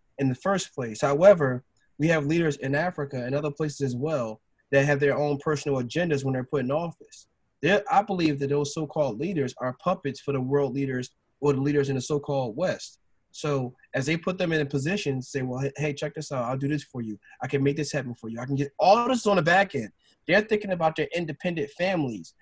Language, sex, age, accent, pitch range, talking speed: English, male, 20-39, American, 140-180 Hz, 230 wpm